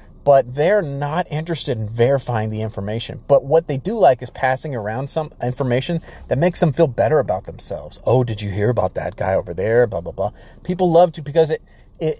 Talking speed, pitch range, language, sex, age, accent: 210 wpm, 115-155 Hz, English, male, 30-49, American